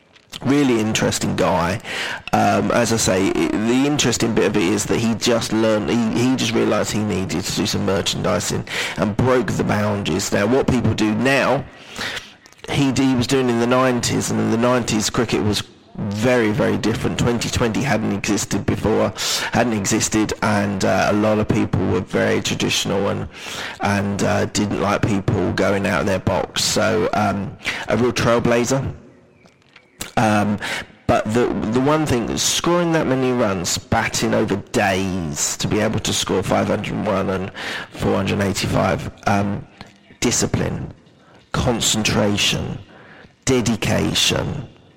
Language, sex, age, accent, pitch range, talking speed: English, male, 30-49, British, 105-125 Hz, 145 wpm